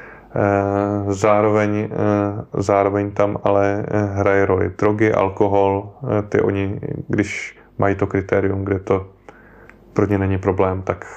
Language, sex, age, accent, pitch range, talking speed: Czech, male, 20-39, native, 95-110 Hz, 115 wpm